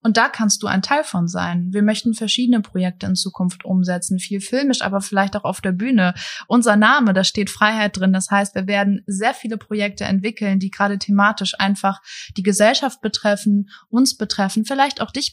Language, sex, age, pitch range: German, female, 20-39, 190-220 Hz